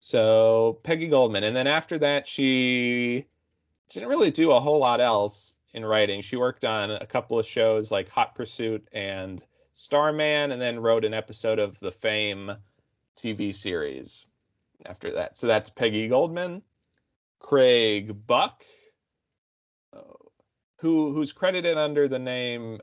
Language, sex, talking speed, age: English, male, 140 wpm, 30-49